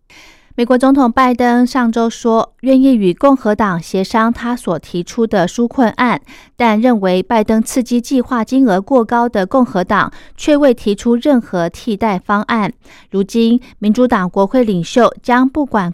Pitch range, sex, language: 195-255 Hz, female, Chinese